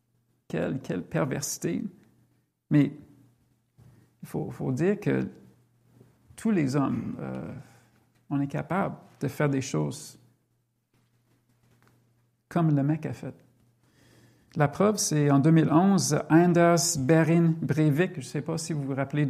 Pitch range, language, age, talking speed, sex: 130-175 Hz, French, 50-69, 130 wpm, male